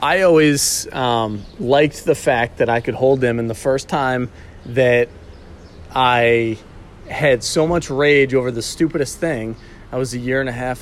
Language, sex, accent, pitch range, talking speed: English, male, American, 120-150 Hz, 175 wpm